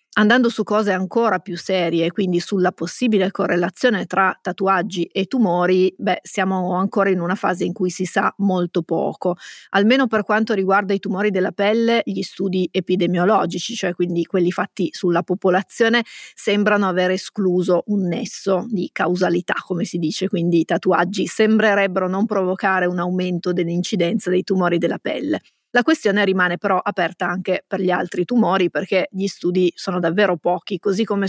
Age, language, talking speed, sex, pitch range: 30-49, Italian, 160 wpm, female, 185-210 Hz